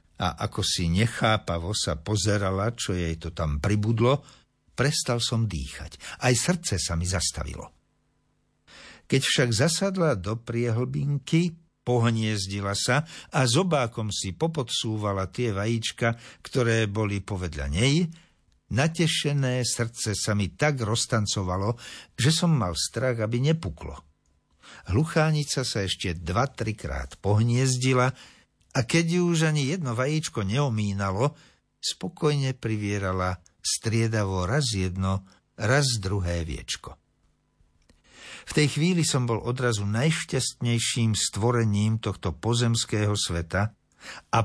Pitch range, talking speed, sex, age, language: 95-130 Hz, 110 wpm, male, 60-79, Slovak